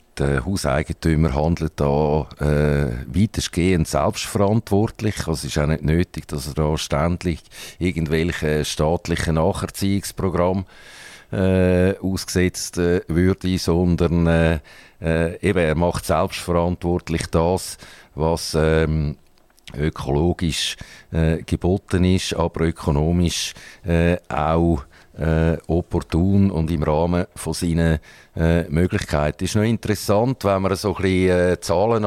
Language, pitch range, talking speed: German, 80-95 Hz, 110 wpm